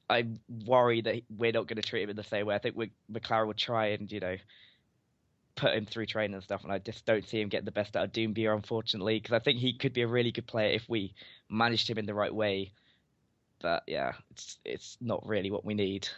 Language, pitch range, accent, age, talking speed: English, 100-115 Hz, British, 10-29, 250 wpm